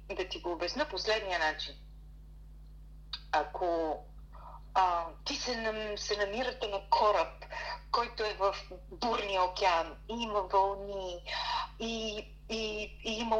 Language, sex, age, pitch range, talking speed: Bulgarian, female, 40-59, 185-230 Hz, 115 wpm